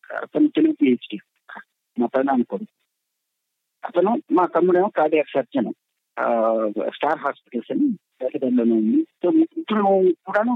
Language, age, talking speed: Telugu, 50-69, 95 wpm